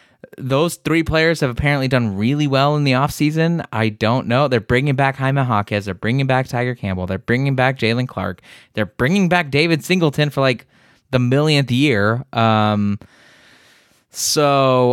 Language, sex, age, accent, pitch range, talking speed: English, male, 20-39, American, 105-140 Hz, 165 wpm